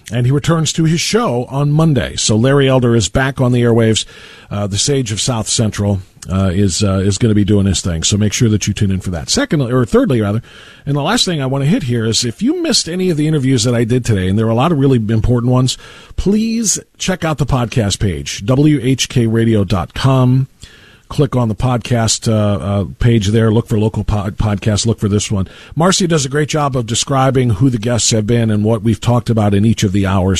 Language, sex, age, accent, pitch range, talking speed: English, male, 50-69, American, 105-145 Hz, 240 wpm